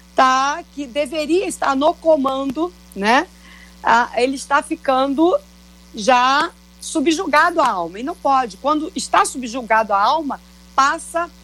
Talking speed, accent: 125 wpm, Brazilian